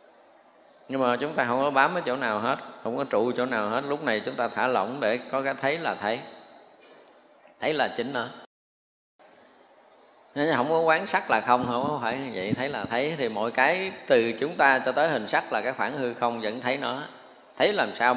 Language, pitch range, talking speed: Vietnamese, 120-150 Hz, 230 wpm